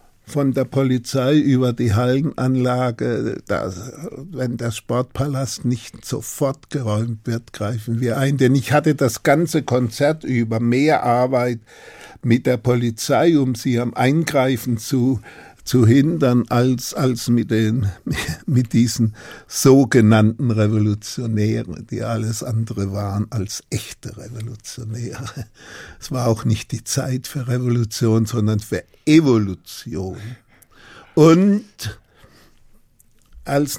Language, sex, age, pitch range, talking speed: German, male, 50-69, 115-135 Hz, 115 wpm